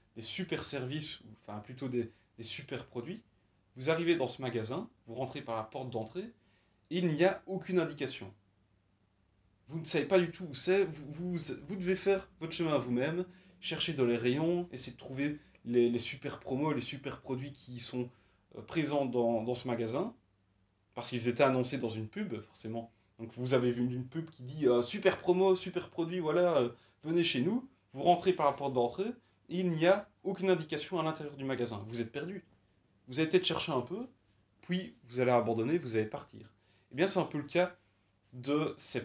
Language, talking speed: French, 205 wpm